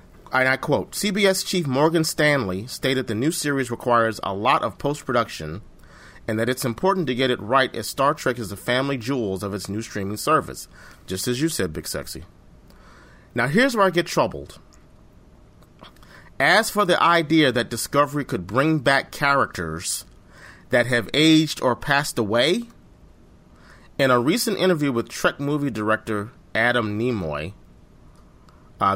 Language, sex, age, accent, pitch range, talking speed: English, male, 30-49, American, 105-145 Hz, 155 wpm